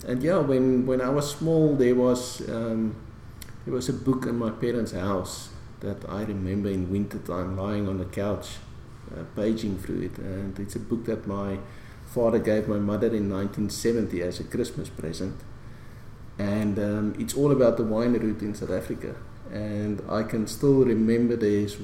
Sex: male